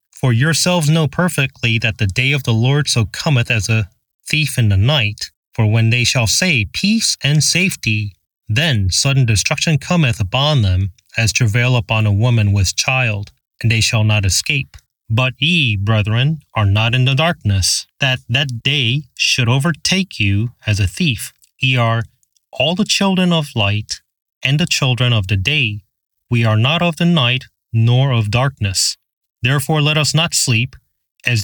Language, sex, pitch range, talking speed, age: English, male, 110-140 Hz, 170 wpm, 30-49